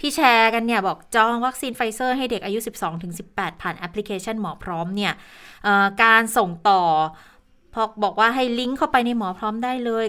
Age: 20-39